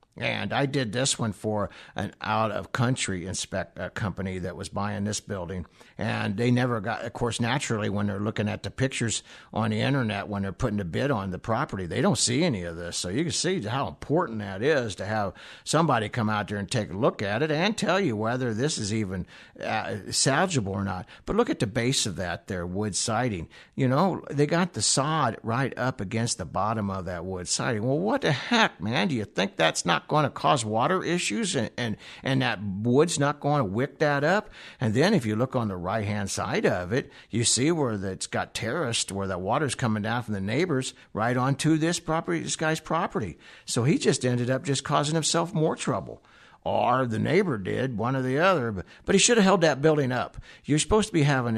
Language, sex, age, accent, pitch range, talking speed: English, male, 60-79, American, 105-145 Hz, 225 wpm